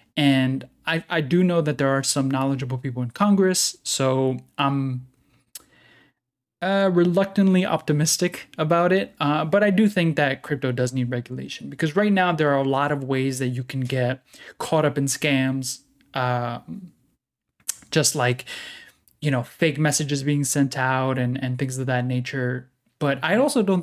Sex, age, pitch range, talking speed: male, 20-39, 130-160 Hz, 170 wpm